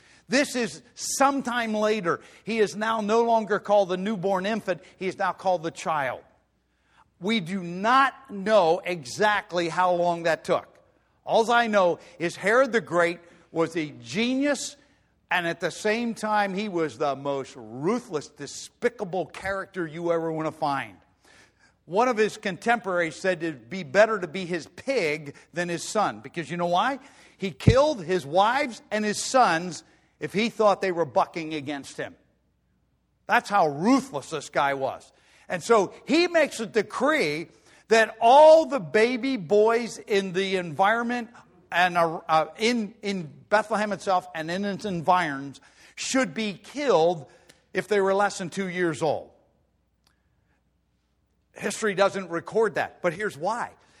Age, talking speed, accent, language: 50-69, 150 wpm, American, English